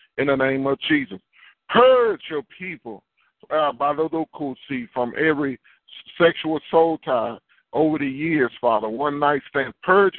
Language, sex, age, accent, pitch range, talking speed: English, male, 50-69, American, 130-155 Hz, 155 wpm